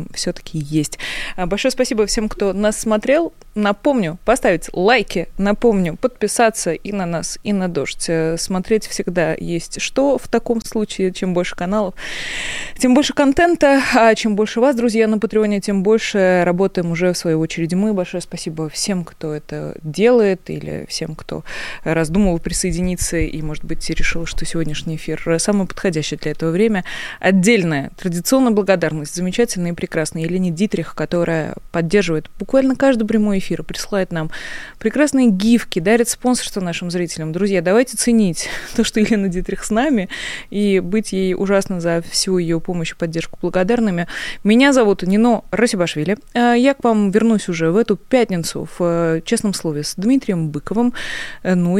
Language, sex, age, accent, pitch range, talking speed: Russian, female, 20-39, native, 170-220 Hz, 155 wpm